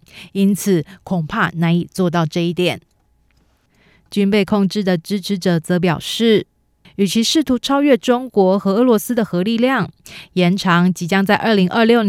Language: Chinese